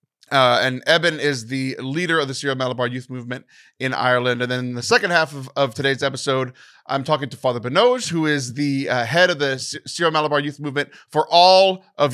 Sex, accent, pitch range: male, American, 125-155 Hz